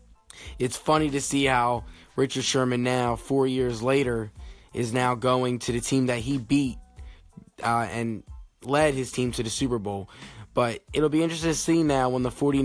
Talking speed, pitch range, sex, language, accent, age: 180 wpm, 115-130 Hz, male, English, American, 10-29